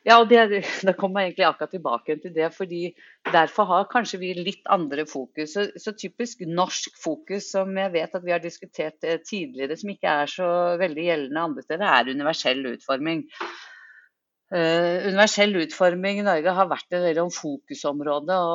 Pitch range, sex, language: 155-185 Hz, female, Swedish